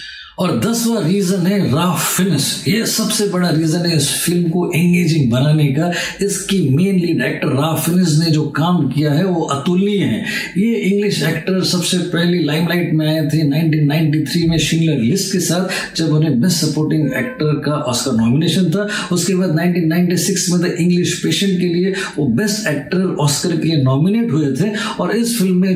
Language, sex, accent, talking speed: Hindi, male, native, 170 wpm